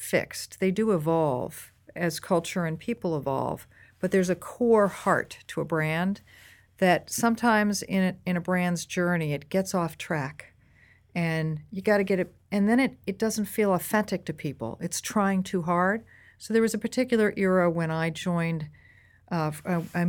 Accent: American